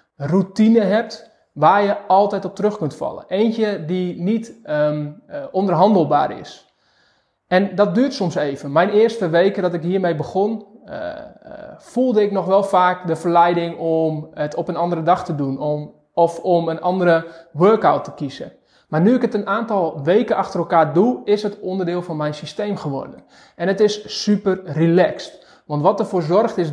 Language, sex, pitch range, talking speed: Dutch, male, 160-205 Hz, 175 wpm